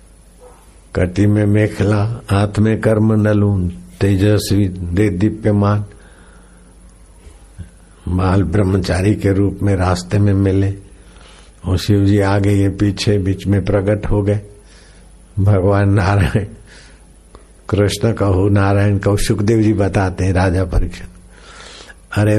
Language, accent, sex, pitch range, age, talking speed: Hindi, native, male, 95-110 Hz, 60-79, 120 wpm